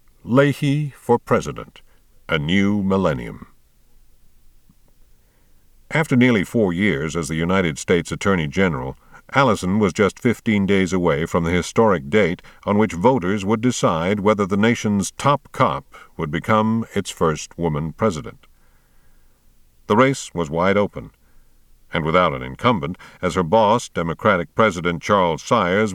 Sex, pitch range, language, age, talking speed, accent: male, 70-110 Hz, English, 60-79, 135 wpm, American